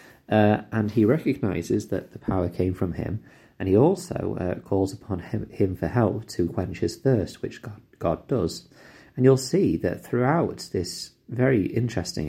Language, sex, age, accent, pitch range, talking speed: English, male, 30-49, British, 90-115 Hz, 175 wpm